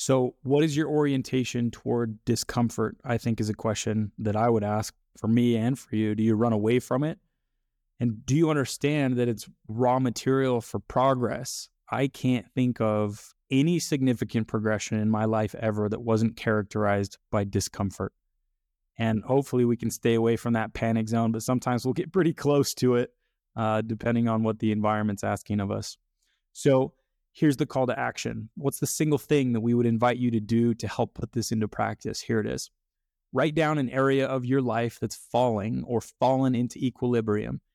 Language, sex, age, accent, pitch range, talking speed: English, male, 20-39, American, 110-130 Hz, 190 wpm